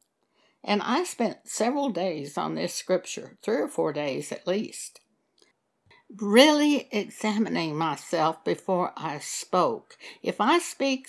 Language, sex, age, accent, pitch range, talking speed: English, female, 60-79, American, 180-245 Hz, 125 wpm